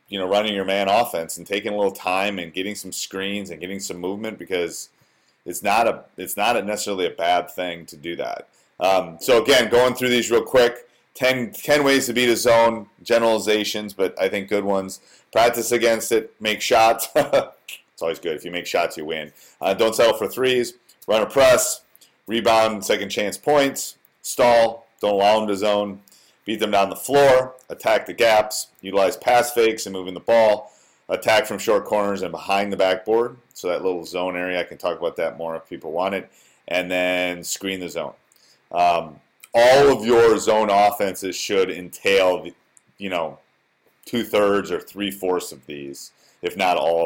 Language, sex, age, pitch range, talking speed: English, male, 30-49, 90-115 Hz, 190 wpm